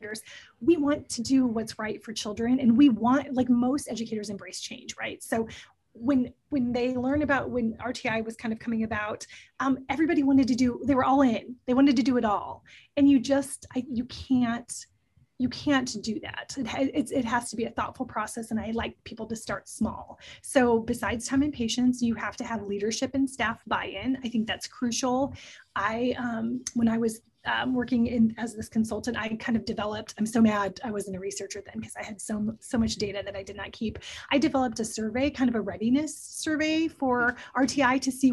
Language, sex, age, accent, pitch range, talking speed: English, female, 30-49, American, 220-260 Hz, 210 wpm